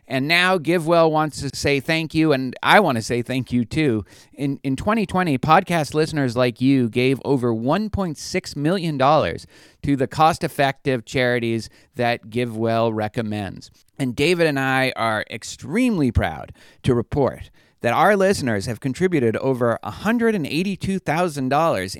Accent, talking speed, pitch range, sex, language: American, 135 wpm, 115-155 Hz, male, English